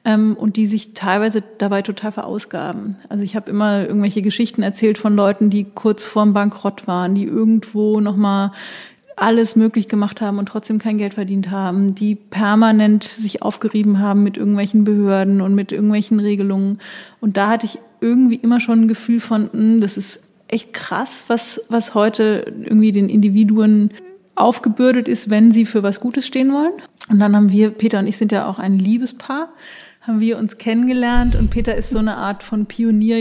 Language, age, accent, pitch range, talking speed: German, 30-49, German, 200-225 Hz, 180 wpm